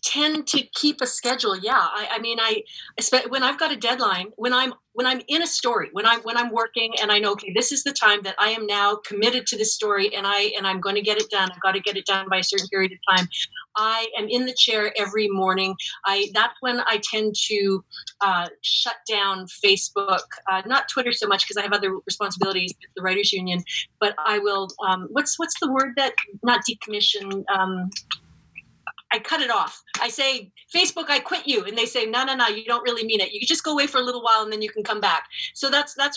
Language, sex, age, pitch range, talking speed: English, female, 40-59, 205-255 Hz, 240 wpm